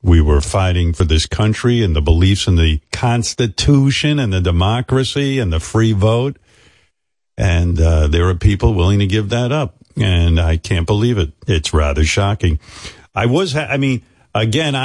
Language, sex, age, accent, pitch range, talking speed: English, male, 50-69, American, 90-125 Hz, 175 wpm